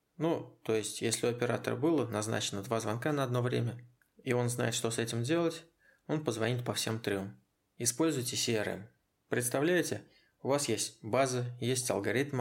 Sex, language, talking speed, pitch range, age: male, Russian, 165 wpm, 110-130 Hz, 20-39